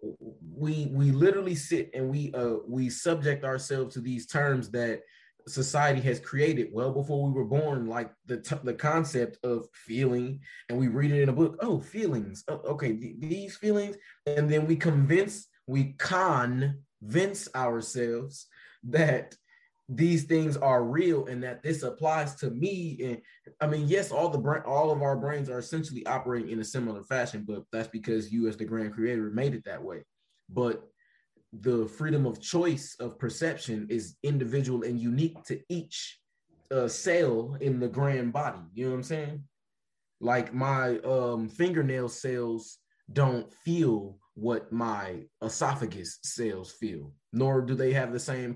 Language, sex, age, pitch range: English, male, 20-39, 120-150 Hz